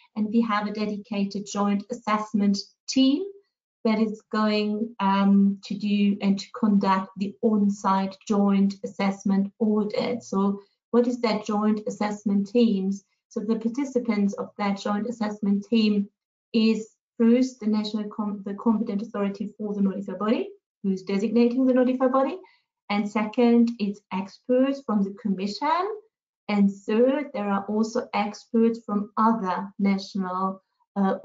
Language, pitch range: English, 200-230 Hz